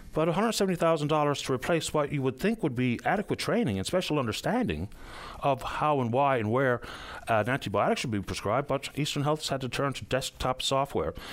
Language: English